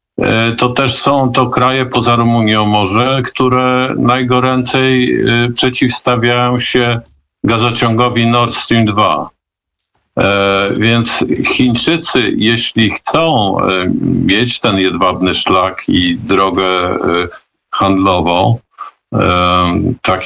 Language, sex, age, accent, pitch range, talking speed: Polish, male, 50-69, native, 105-125 Hz, 85 wpm